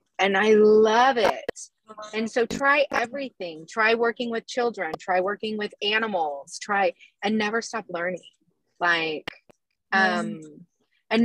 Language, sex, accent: English, female, American